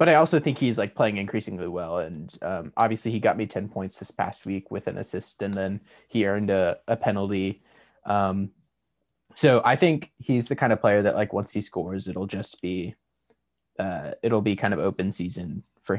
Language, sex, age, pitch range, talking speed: English, male, 20-39, 100-130 Hz, 205 wpm